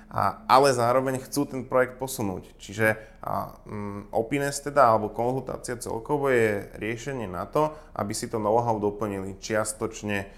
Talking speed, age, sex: 145 wpm, 20-39, male